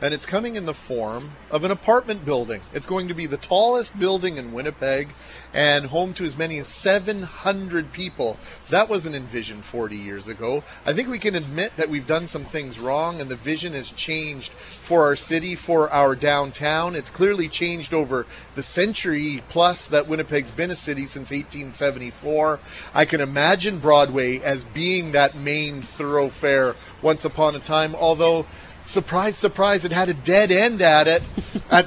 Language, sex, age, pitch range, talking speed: English, male, 40-59, 145-175 Hz, 175 wpm